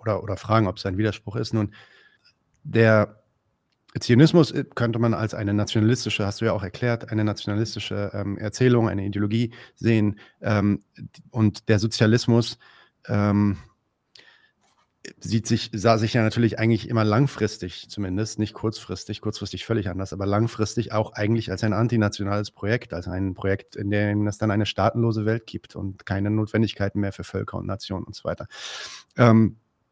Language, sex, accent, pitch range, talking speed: German, male, German, 105-115 Hz, 160 wpm